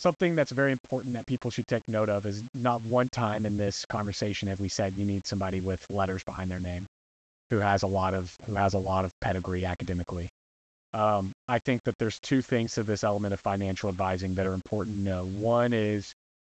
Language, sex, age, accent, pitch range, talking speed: English, male, 30-49, American, 95-115 Hz, 220 wpm